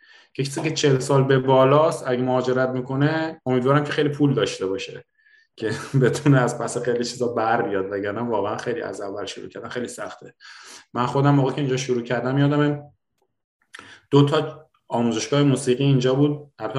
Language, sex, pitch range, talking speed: Persian, male, 120-140 Hz, 165 wpm